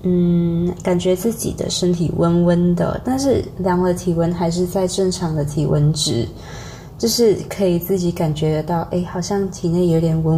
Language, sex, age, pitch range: Chinese, female, 20-39, 170-220 Hz